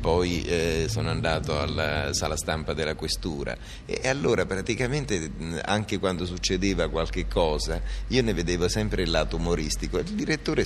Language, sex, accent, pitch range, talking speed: Italian, male, native, 80-105 Hz, 145 wpm